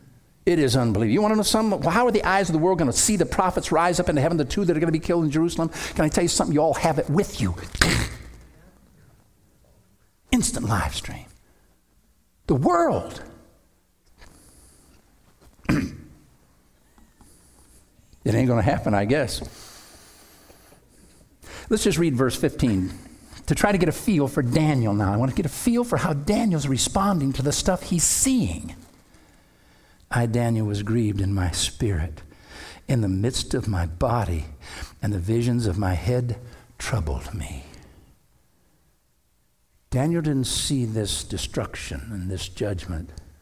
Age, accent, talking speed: 60-79, American, 160 wpm